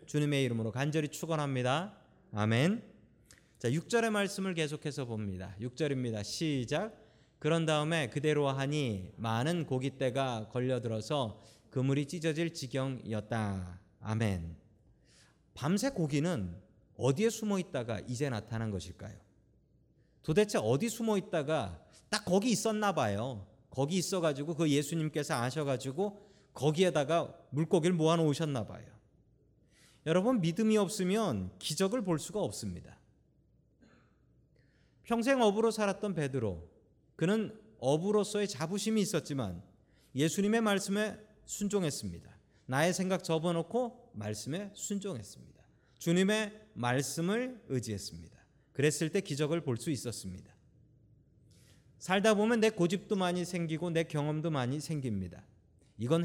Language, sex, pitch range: Korean, male, 115-185 Hz